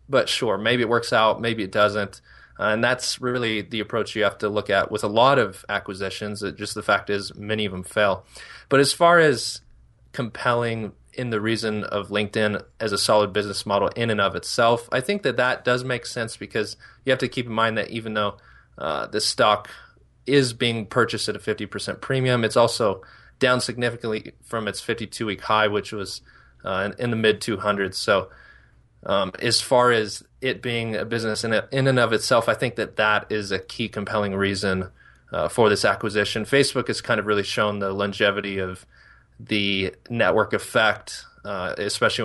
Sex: male